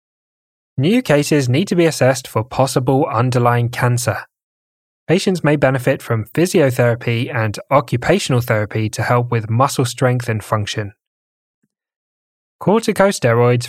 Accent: British